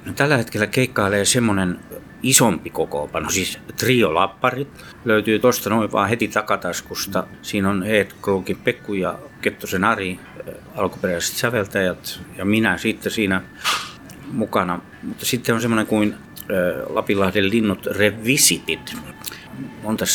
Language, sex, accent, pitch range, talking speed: Finnish, male, native, 95-110 Hz, 115 wpm